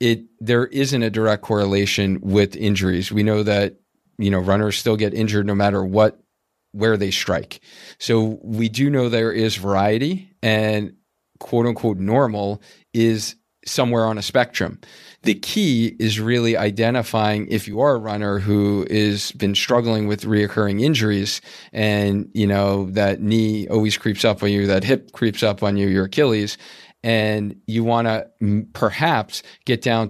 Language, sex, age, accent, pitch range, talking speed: English, male, 40-59, American, 100-115 Hz, 160 wpm